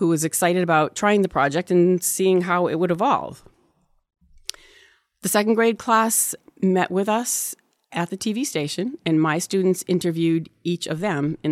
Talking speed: 165 wpm